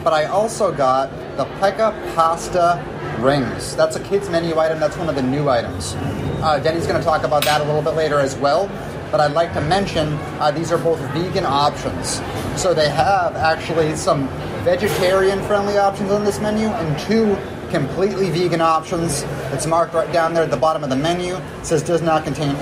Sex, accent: male, American